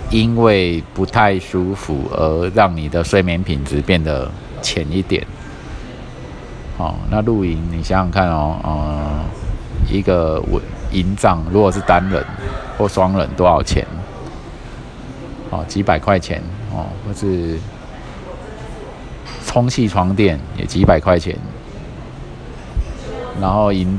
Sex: male